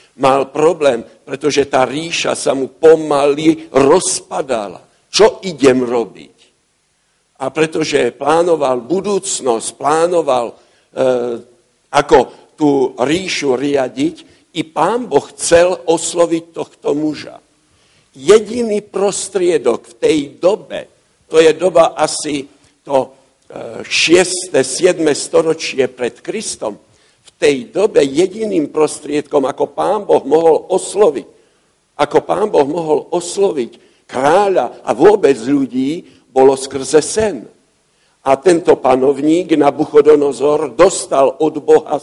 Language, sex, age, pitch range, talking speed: Slovak, male, 60-79, 145-210 Hz, 105 wpm